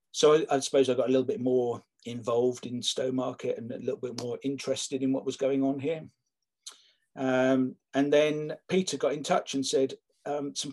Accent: British